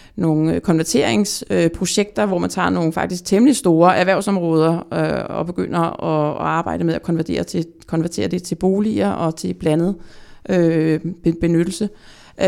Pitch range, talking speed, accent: 165-200 Hz, 120 wpm, native